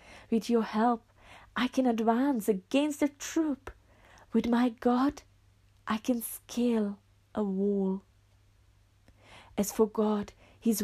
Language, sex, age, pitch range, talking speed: English, female, 30-49, 205-245 Hz, 115 wpm